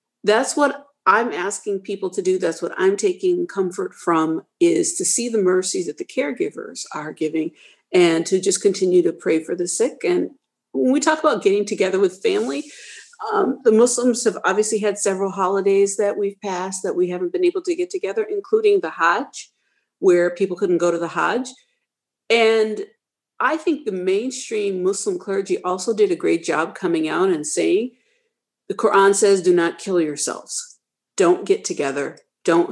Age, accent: 50-69, American